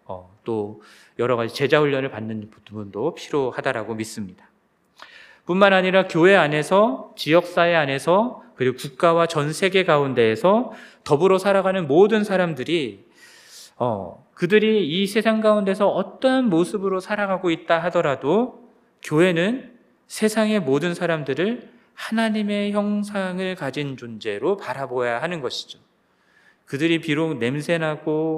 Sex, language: male, Korean